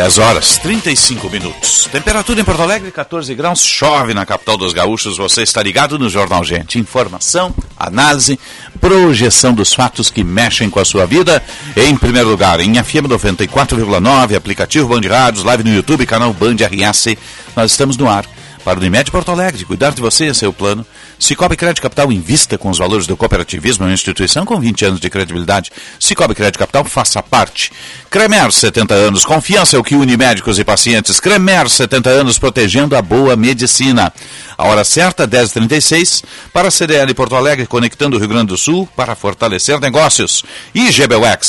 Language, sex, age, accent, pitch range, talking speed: Portuguese, male, 60-79, Brazilian, 110-155 Hz, 175 wpm